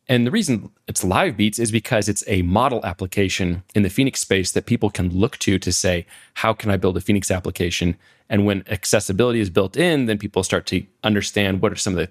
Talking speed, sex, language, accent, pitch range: 230 wpm, male, English, American, 95-120 Hz